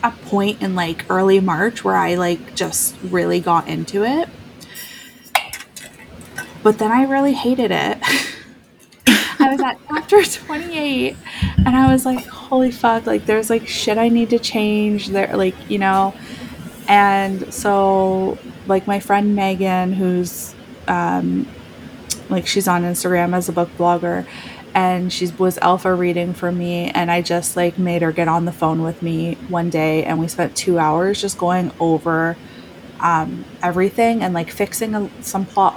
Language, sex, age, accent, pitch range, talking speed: English, female, 20-39, American, 175-210 Hz, 160 wpm